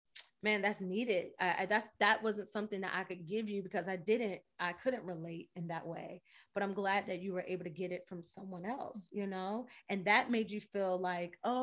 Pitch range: 185-220 Hz